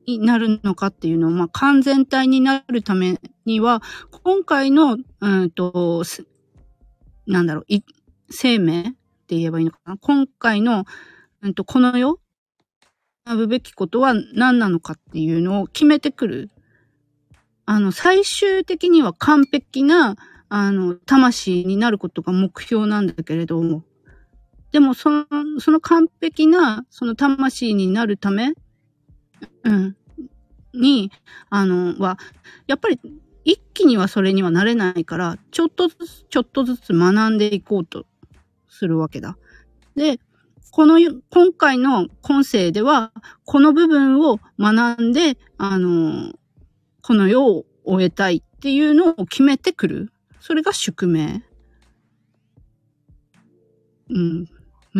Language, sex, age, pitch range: Japanese, female, 40-59, 175-275 Hz